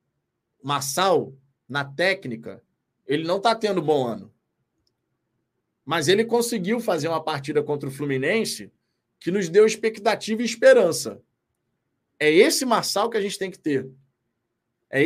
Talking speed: 135 wpm